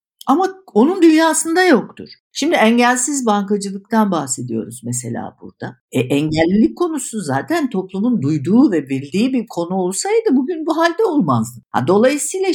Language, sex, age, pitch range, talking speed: Turkish, female, 60-79, 170-270 Hz, 130 wpm